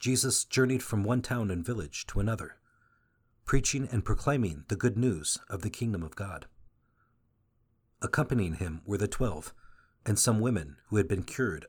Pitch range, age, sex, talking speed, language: 100-120 Hz, 50-69, male, 165 wpm, English